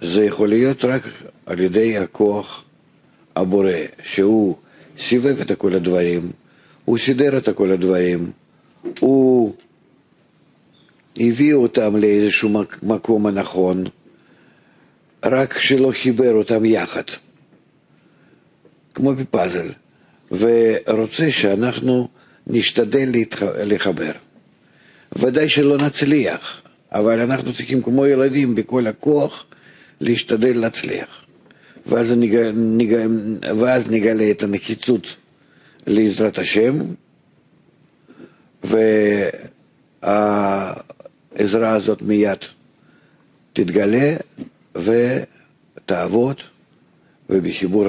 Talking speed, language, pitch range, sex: 80 wpm, Hebrew, 100-125 Hz, male